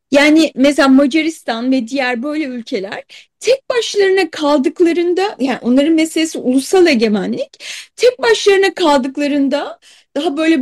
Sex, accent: female, native